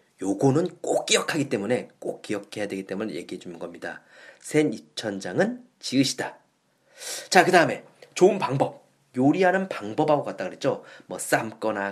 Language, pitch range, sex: Korean, 125-185 Hz, male